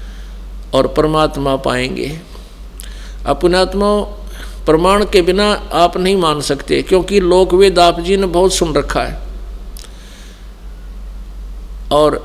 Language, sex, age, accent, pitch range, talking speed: Hindi, male, 50-69, native, 140-185 Hz, 110 wpm